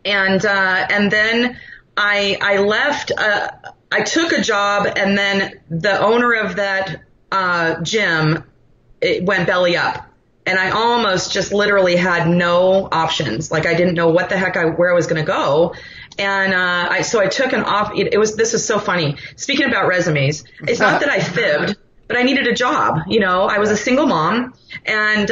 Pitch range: 170-220 Hz